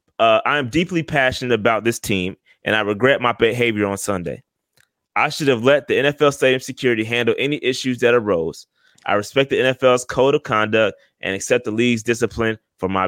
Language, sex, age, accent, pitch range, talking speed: English, male, 20-39, American, 125-180 Hz, 195 wpm